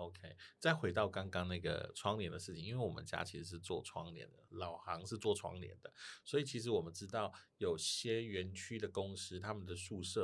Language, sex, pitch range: Chinese, male, 90-115 Hz